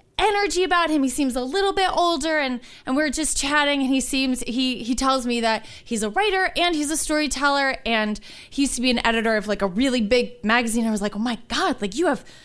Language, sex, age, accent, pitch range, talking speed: English, female, 20-39, American, 215-290 Hz, 245 wpm